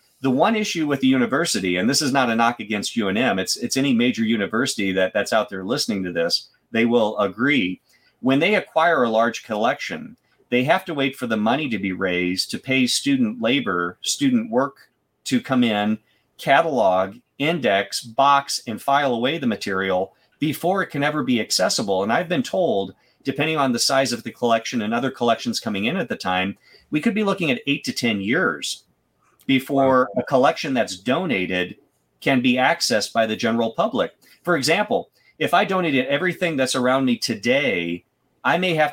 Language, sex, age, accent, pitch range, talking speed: English, male, 40-59, American, 110-150 Hz, 185 wpm